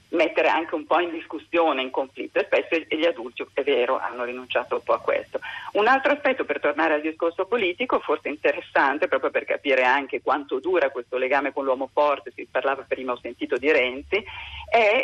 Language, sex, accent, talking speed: Italian, female, native, 195 wpm